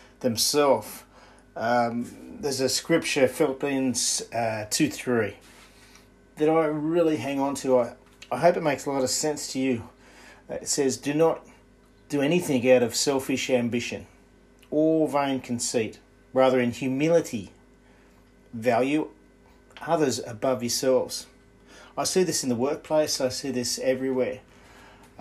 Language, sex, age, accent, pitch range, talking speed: English, male, 40-59, Australian, 120-150 Hz, 130 wpm